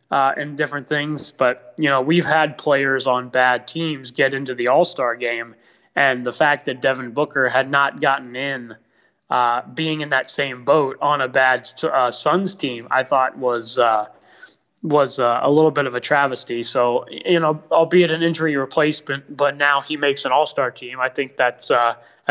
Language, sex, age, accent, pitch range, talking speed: English, male, 20-39, American, 125-155 Hz, 190 wpm